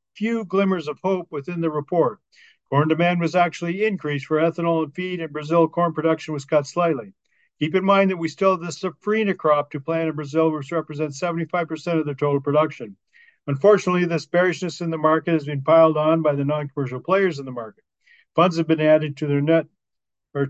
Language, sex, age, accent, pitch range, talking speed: English, male, 50-69, American, 145-175 Hz, 205 wpm